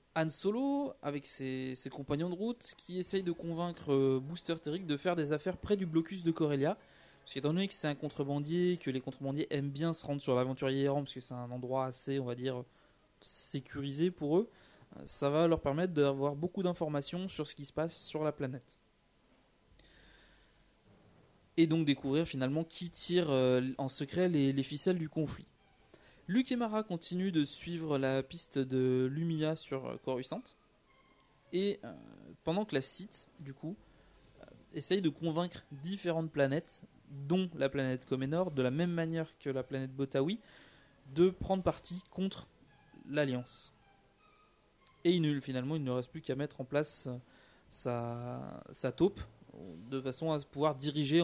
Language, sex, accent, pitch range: French, male, French, 135-170 Hz